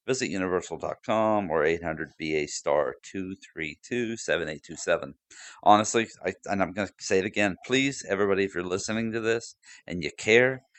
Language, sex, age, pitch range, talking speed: English, male, 50-69, 85-105 Hz, 145 wpm